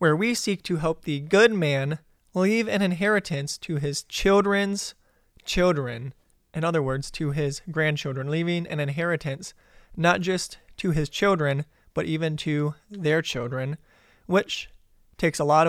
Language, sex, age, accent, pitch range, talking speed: English, male, 20-39, American, 140-170 Hz, 145 wpm